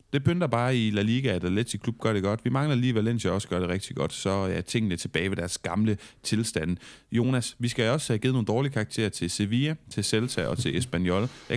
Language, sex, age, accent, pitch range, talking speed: Danish, male, 30-49, native, 95-115 Hz, 240 wpm